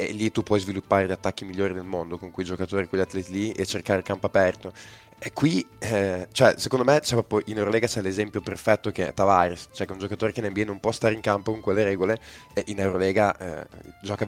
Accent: native